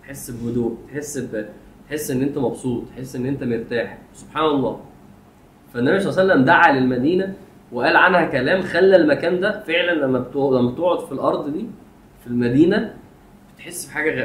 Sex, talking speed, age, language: male, 160 wpm, 20-39, Arabic